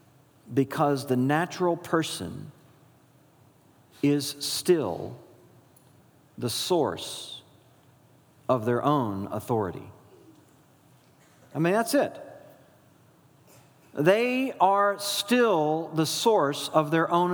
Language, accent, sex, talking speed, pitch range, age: English, American, male, 85 wpm, 140-210 Hz, 50-69